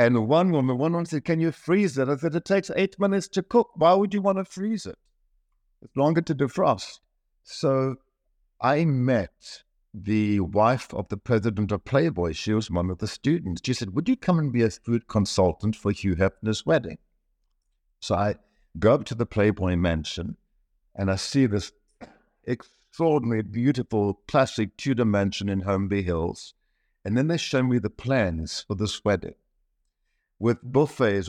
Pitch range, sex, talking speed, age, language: 105-135 Hz, male, 175 wpm, 60-79, English